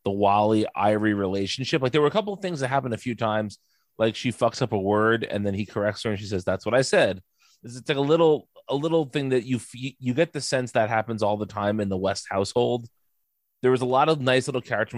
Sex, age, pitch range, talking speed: male, 30-49, 105-130 Hz, 255 wpm